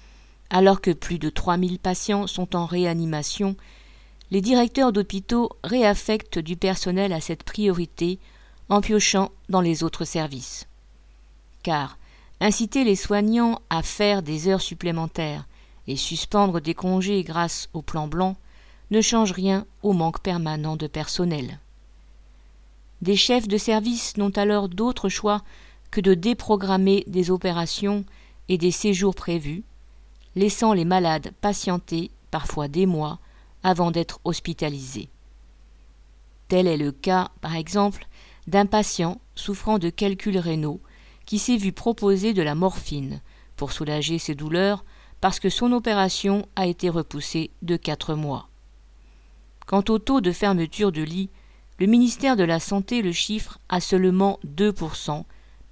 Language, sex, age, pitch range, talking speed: French, female, 50-69, 155-200 Hz, 135 wpm